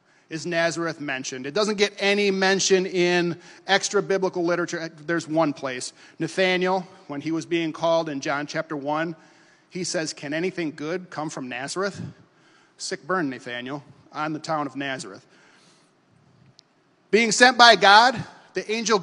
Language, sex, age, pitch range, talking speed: English, male, 40-59, 160-195 Hz, 150 wpm